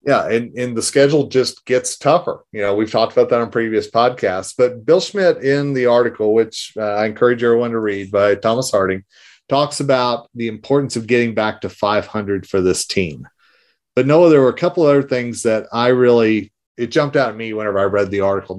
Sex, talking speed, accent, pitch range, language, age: male, 215 wpm, American, 105-130 Hz, English, 40-59